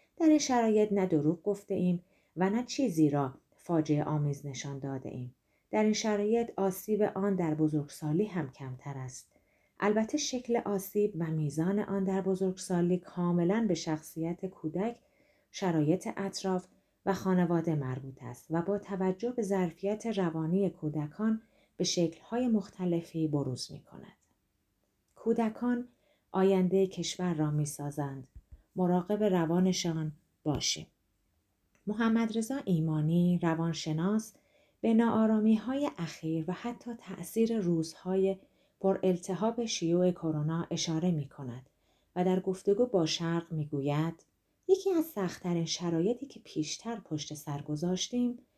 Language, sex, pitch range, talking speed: Persian, female, 155-210 Hz, 115 wpm